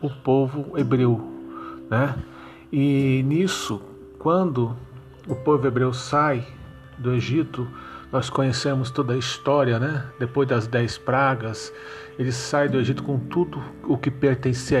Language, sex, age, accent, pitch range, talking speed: Portuguese, male, 50-69, Brazilian, 125-145 Hz, 130 wpm